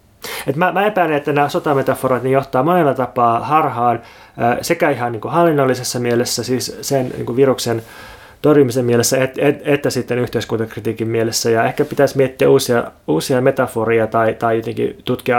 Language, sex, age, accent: Finnish, male, 30-49, native